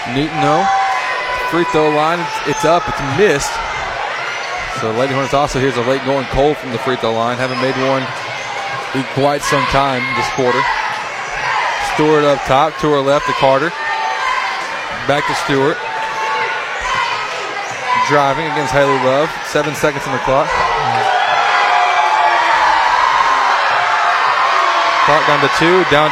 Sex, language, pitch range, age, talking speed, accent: male, English, 155-200 Hz, 20-39, 130 wpm, American